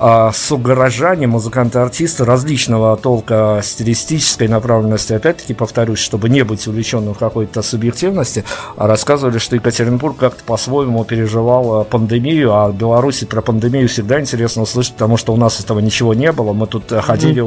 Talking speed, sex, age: 140 wpm, male, 50-69